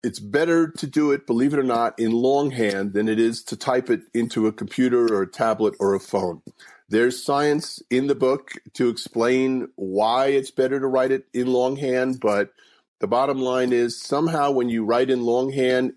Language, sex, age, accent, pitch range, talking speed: English, male, 50-69, American, 115-145 Hz, 195 wpm